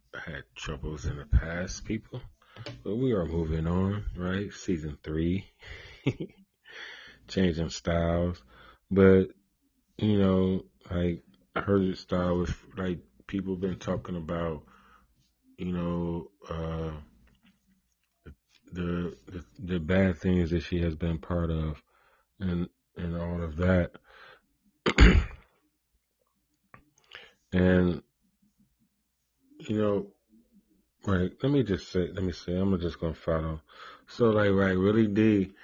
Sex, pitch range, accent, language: male, 85-95 Hz, American, English